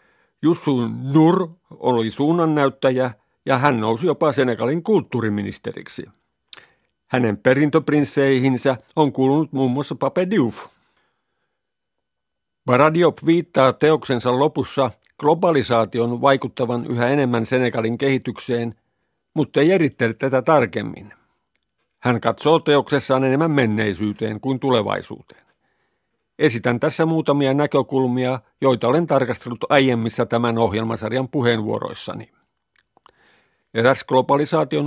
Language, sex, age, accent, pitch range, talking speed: Finnish, male, 50-69, native, 120-150 Hz, 90 wpm